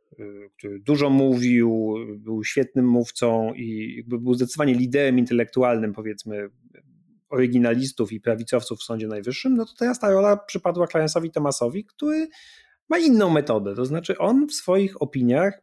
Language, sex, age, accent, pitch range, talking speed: Polish, male, 30-49, native, 125-195 Hz, 140 wpm